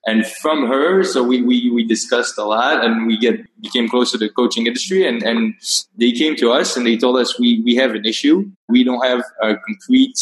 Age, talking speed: 20-39, 230 wpm